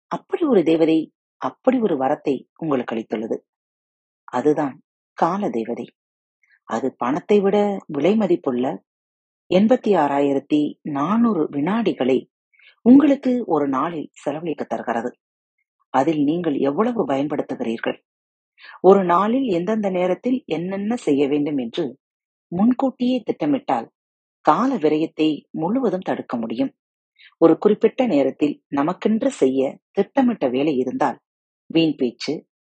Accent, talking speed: native, 95 wpm